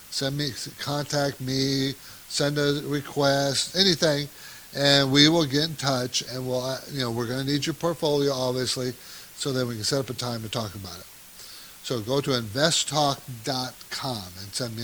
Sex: male